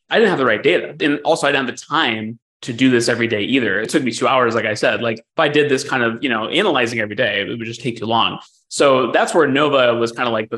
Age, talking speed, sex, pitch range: 20-39, 300 wpm, male, 115-140 Hz